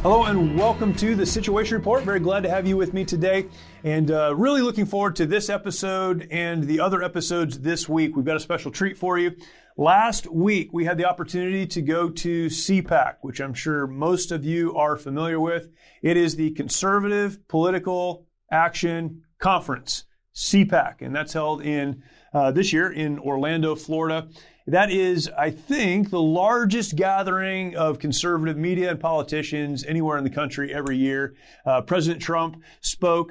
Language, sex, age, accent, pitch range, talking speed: English, male, 30-49, American, 155-185 Hz, 170 wpm